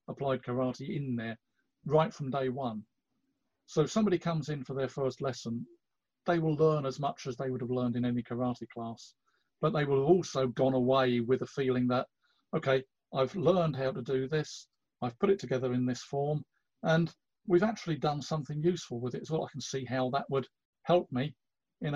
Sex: male